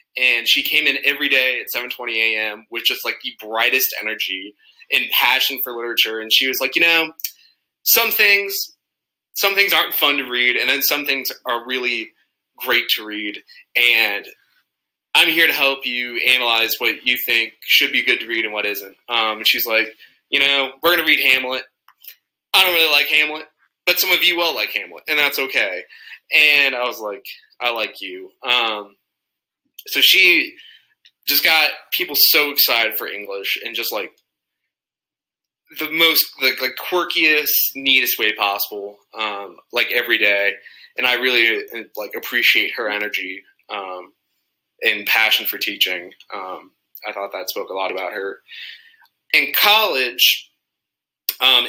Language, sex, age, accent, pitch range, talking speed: English, male, 20-39, American, 120-175 Hz, 165 wpm